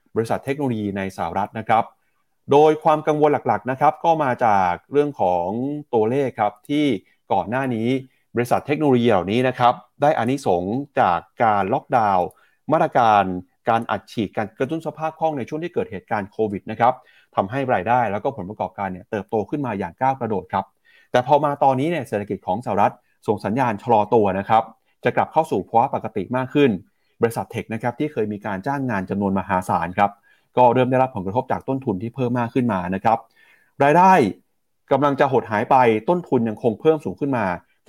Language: Thai